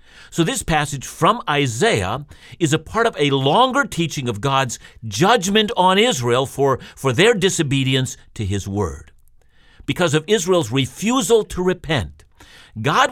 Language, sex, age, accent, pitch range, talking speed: English, male, 50-69, American, 130-185 Hz, 140 wpm